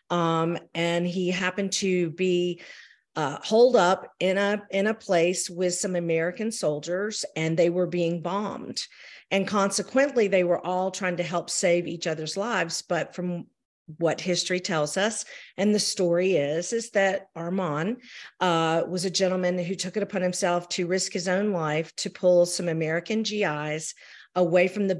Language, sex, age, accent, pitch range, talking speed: English, female, 50-69, American, 175-210 Hz, 165 wpm